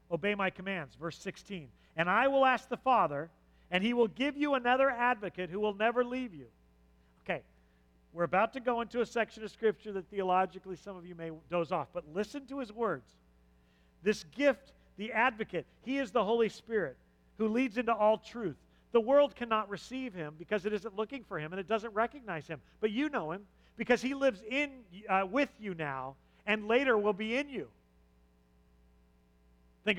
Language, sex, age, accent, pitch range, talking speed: English, male, 40-59, American, 175-235 Hz, 190 wpm